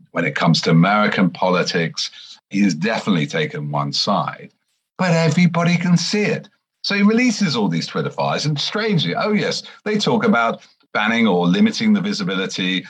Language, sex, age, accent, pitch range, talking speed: English, male, 50-69, British, 130-210 Hz, 165 wpm